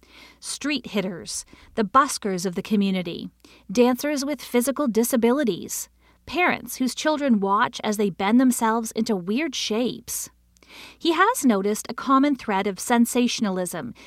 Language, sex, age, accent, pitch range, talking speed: English, female, 40-59, American, 205-265 Hz, 130 wpm